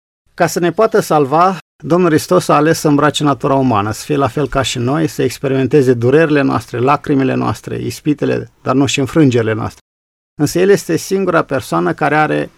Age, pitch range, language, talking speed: 50-69, 130-155 Hz, Romanian, 185 wpm